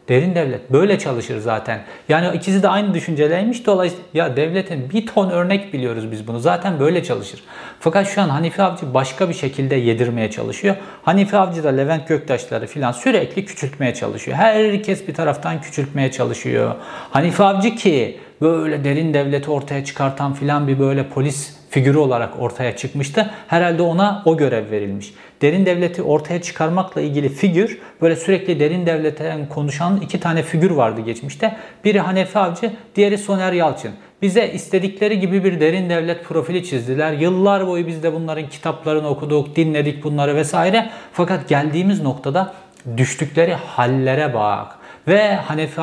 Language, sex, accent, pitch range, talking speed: Turkish, male, native, 135-180 Hz, 150 wpm